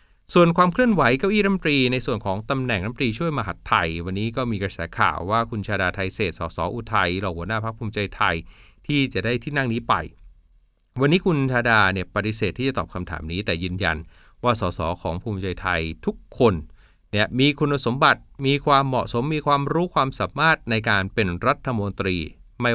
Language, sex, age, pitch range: Thai, male, 20-39, 95-125 Hz